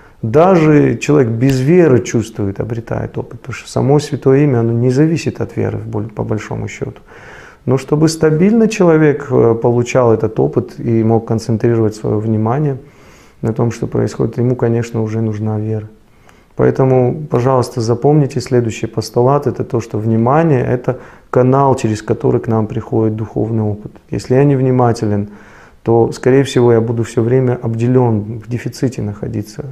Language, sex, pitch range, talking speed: Russian, male, 115-130 Hz, 150 wpm